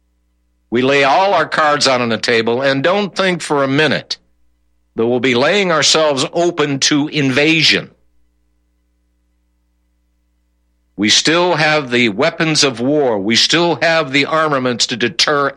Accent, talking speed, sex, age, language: American, 145 wpm, male, 60-79, English